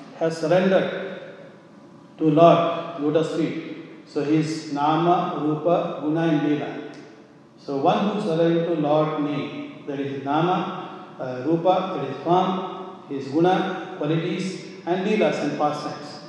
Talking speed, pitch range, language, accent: 130 wpm, 150-170 Hz, English, Indian